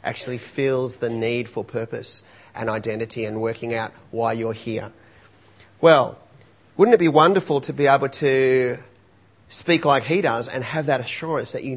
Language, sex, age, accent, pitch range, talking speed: English, male, 30-49, Australian, 115-155 Hz, 170 wpm